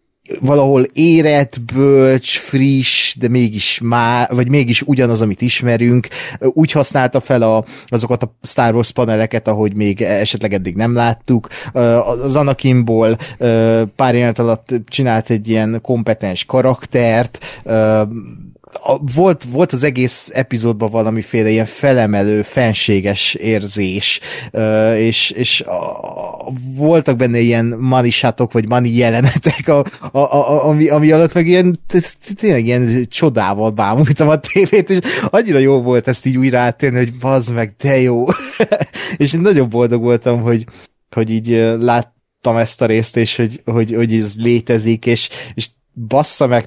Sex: male